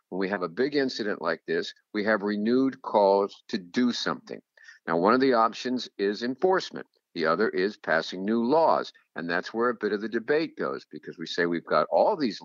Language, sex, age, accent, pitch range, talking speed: English, male, 50-69, American, 105-130 Hz, 210 wpm